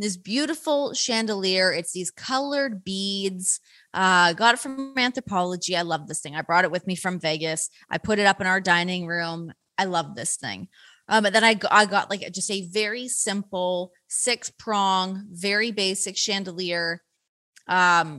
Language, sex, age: English, female, 20-39